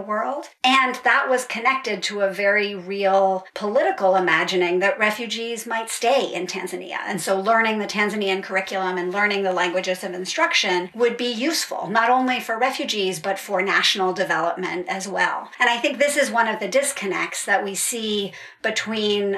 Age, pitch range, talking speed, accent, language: 50-69, 190-235 Hz, 170 wpm, American, English